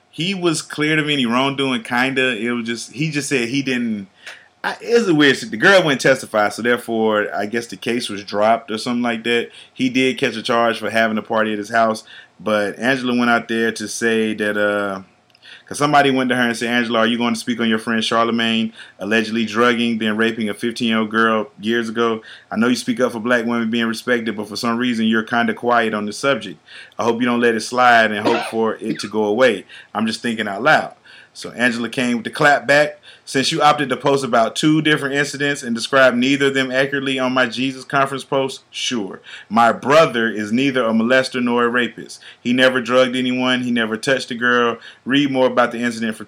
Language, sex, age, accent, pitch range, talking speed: English, male, 30-49, American, 110-130 Hz, 225 wpm